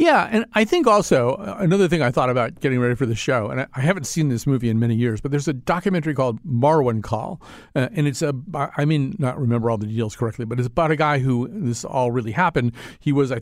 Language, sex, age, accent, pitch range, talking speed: English, male, 50-69, American, 120-150 Hz, 255 wpm